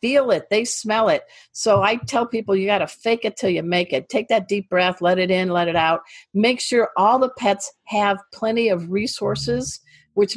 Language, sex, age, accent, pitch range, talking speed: English, female, 50-69, American, 180-225 Hz, 220 wpm